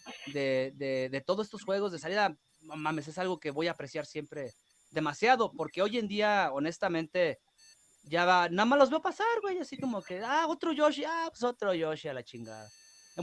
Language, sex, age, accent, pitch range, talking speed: Spanish, male, 30-49, Mexican, 150-230 Hz, 195 wpm